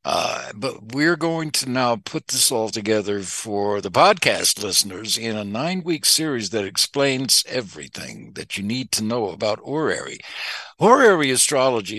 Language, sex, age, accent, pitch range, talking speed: English, male, 60-79, American, 110-145 Hz, 150 wpm